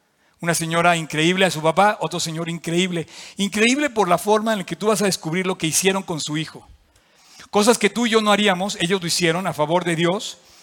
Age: 50-69